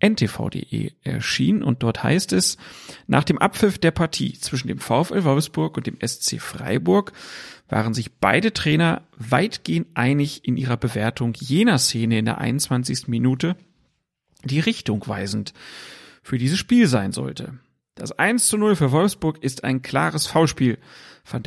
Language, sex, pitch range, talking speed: German, male, 120-145 Hz, 150 wpm